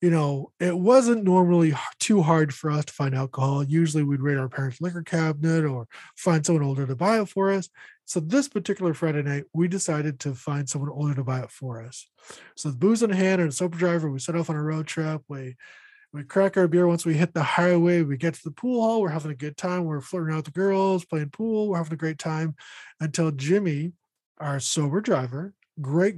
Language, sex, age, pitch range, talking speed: English, male, 20-39, 155-195 Hz, 225 wpm